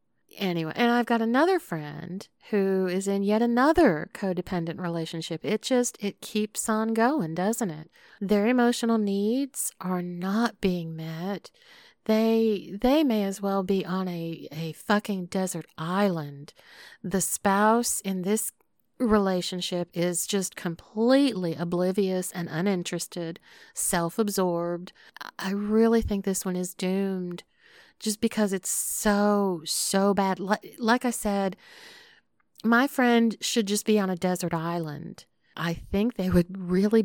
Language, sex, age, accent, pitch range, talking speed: English, female, 40-59, American, 180-230 Hz, 135 wpm